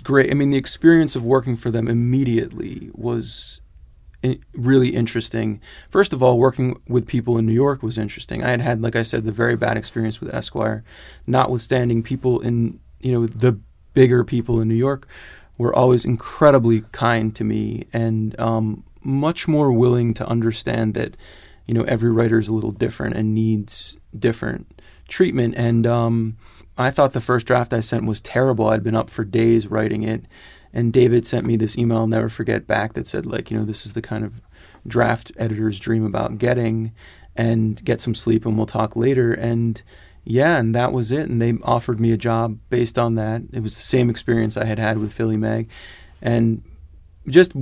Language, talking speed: English, 190 wpm